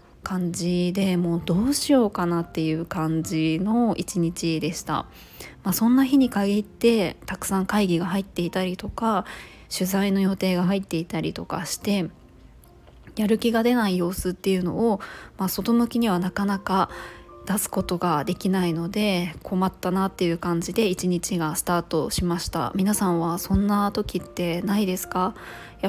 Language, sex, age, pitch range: Japanese, female, 20-39, 175-210 Hz